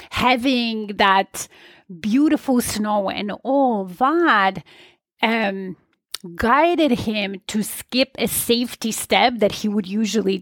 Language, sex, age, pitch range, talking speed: English, female, 30-49, 205-270 Hz, 110 wpm